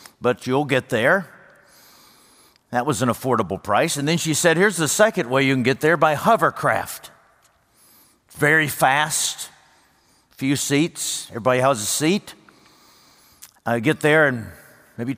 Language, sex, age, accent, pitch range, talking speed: English, male, 50-69, American, 130-160 Hz, 140 wpm